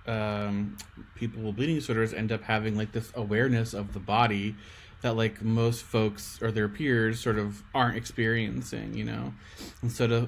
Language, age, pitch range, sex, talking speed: English, 20-39, 105-120 Hz, male, 175 wpm